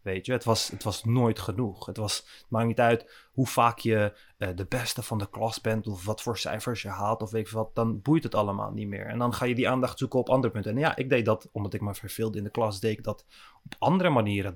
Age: 20-39